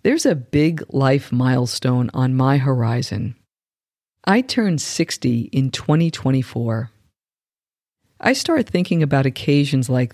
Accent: American